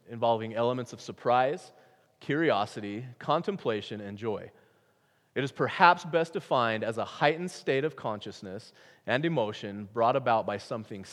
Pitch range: 100-120 Hz